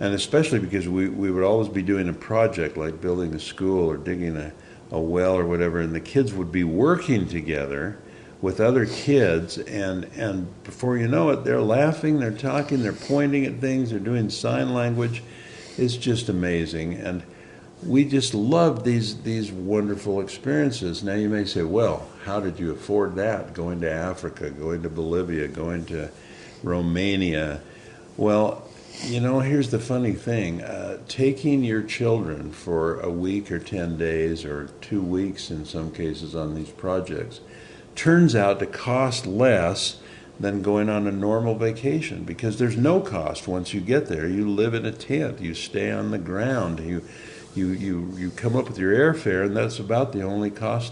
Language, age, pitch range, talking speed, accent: English, 60-79, 85-115 Hz, 175 wpm, American